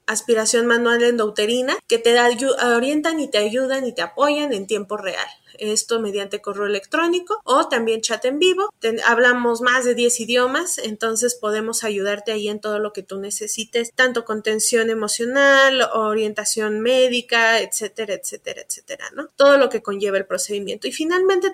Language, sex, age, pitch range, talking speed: Spanish, female, 20-39, 210-265 Hz, 160 wpm